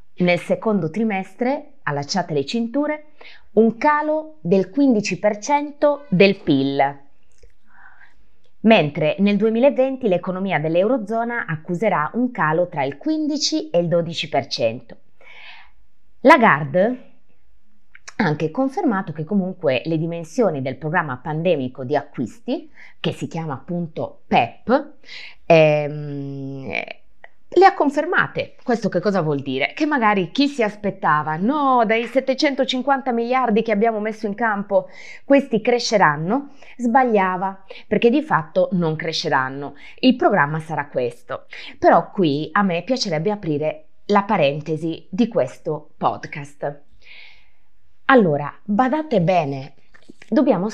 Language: Italian